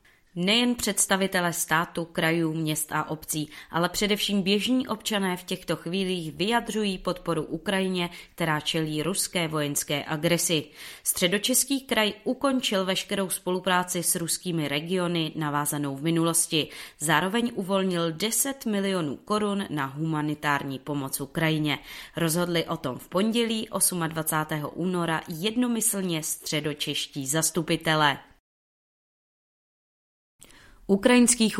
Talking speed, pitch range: 100 wpm, 150-185 Hz